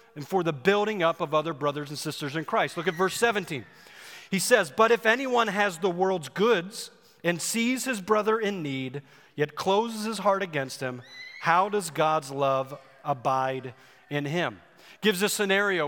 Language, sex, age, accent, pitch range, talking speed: English, male, 40-59, American, 165-220 Hz, 180 wpm